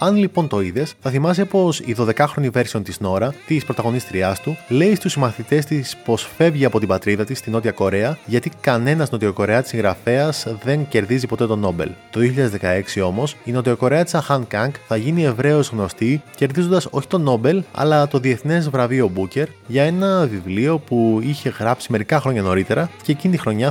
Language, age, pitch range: Greek, 20-39, 110-150 Hz